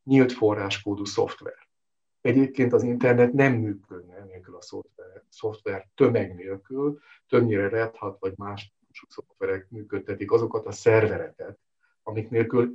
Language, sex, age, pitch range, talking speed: Hungarian, male, 50-69, 100-135 Hz, 125 wpm